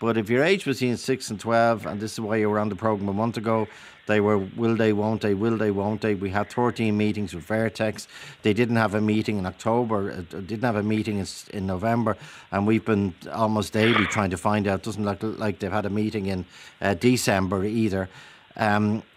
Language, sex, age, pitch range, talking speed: English, male, 50-69, 105-130 Hz, 220 wpm